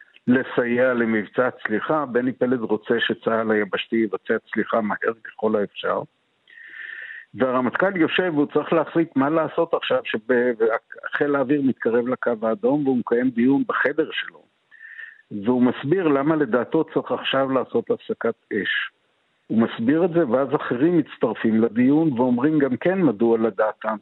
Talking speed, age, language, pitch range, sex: 135 wpm, 60-79, Hebrew, 115-165 Hz, male